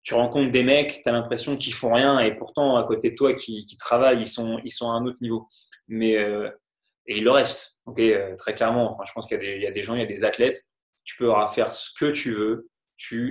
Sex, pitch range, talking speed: male, 110-145 Hz, 270 wpm